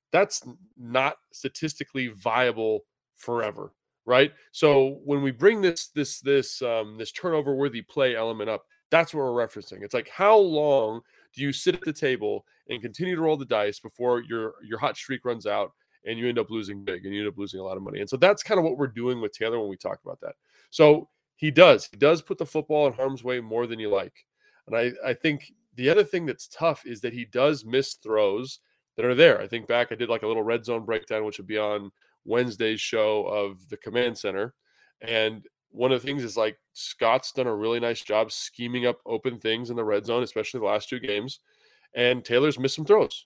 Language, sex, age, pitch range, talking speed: English, male, 20-39, 115-150 Hz, 225 wpm